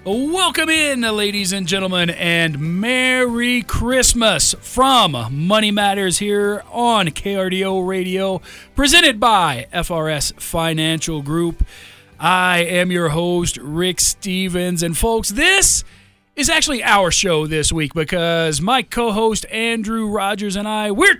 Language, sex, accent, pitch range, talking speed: English, male, American, 165-220 Hz, 120 wpm